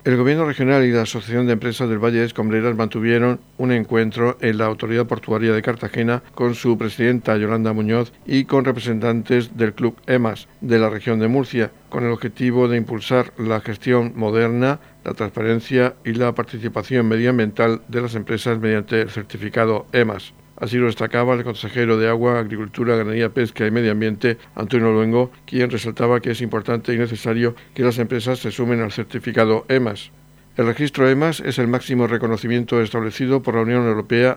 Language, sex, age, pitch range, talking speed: Spanish, male, 60-79, 110-125 Hz, 175 wpm